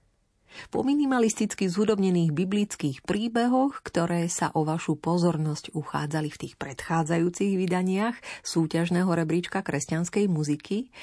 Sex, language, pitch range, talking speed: female, Slovak, 155-205 Hz, 105 wpm